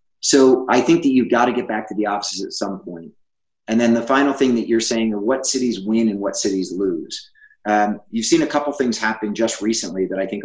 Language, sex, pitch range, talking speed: English, male, 100-140 Hz, 255 wpm